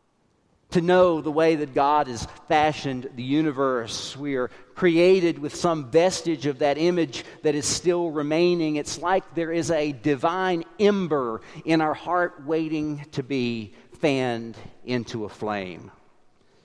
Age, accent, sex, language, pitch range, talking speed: 50-69, American, male, English, 120-170 Hz, 145 wpm